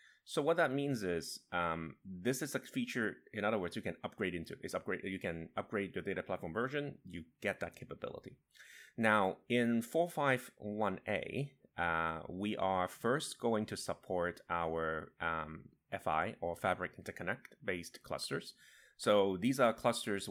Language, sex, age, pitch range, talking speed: English, male, 30-49, 85-110 Hz, 160 wpm